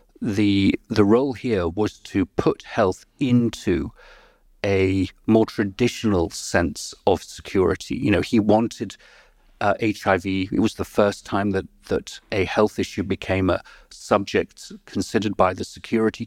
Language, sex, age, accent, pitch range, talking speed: English, male, 40-59, British, 100-115 Hz, 140 wpm